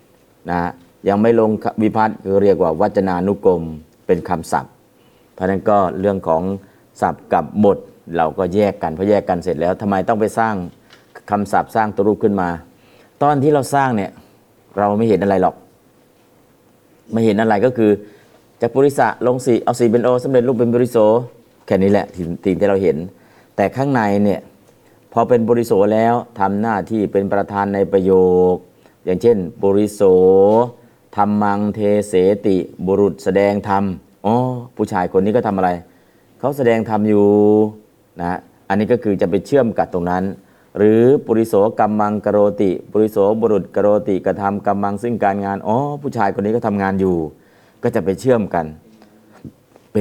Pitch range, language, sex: 95-110 Hz, Thai, male